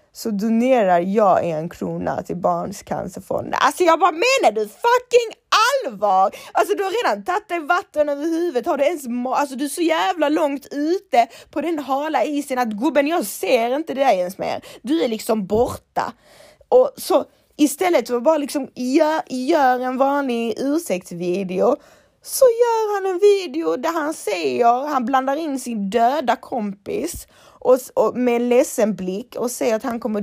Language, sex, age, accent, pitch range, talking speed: Swedish, female, 20-39, native, 210-300 Hz, 170 wpm